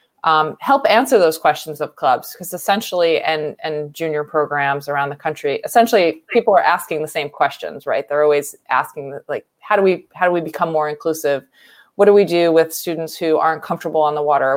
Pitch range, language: 150-170 Hz, English